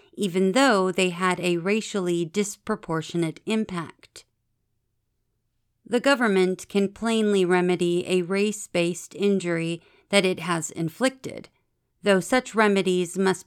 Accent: American